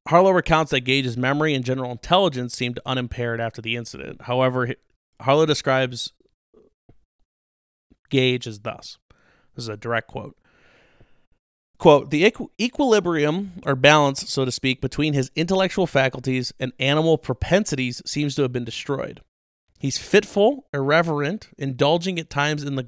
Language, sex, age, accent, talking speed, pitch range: English, male, 30-49, American, 135 wpm, 130-155 Hz